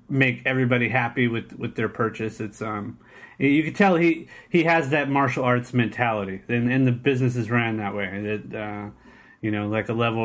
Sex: male